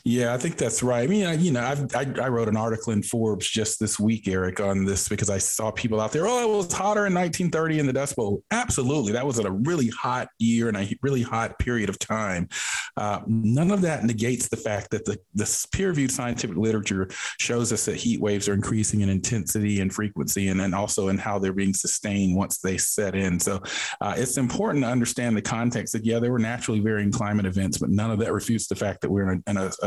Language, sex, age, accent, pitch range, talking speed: English, male, 40-59, American, 100-120 Hz, 230 wpm